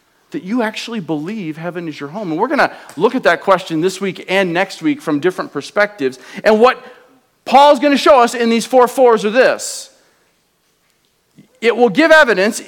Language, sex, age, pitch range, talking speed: English, male, 40-59, 160-225 Hz, 195 wpm